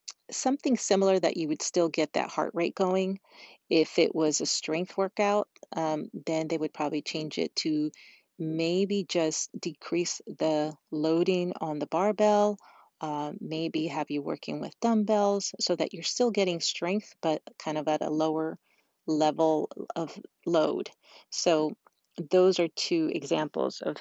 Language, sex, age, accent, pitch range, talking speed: English, female, 40-59, American, 155-195 Hz, 150 wpm